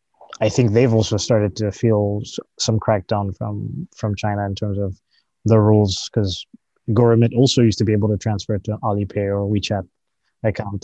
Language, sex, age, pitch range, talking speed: English, male, 20-39, 105-115 Hz, 170 wpm